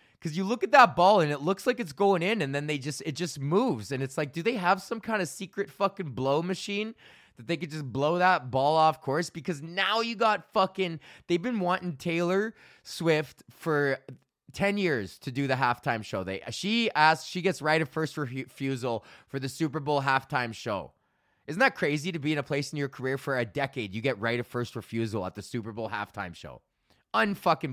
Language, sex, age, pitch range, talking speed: English, male, 20-39, 135-185 Hz, 220 wpm